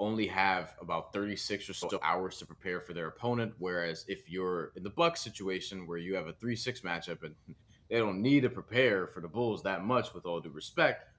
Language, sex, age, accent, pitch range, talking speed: English, male, 30-49, American, 90-120 Hz, 220 wpm